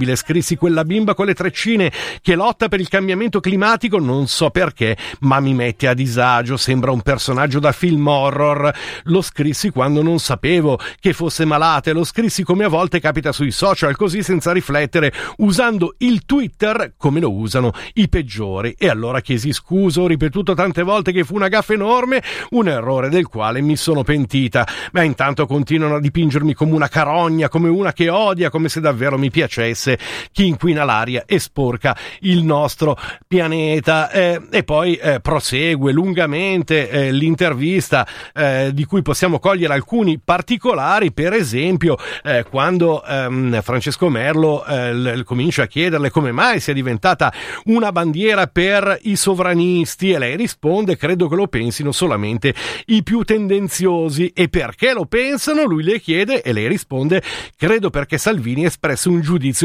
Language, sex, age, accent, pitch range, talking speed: Italian, male, 50-69, native, 140-185 Hz, 160 wpm